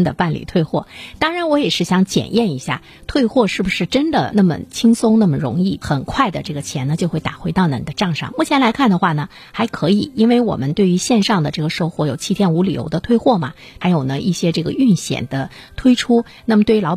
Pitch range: 155-215 Hz